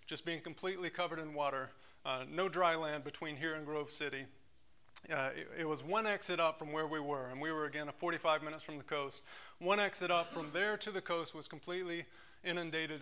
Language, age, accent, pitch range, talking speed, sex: English, 30-49, American, 155-190 Hz, 215 wpm, male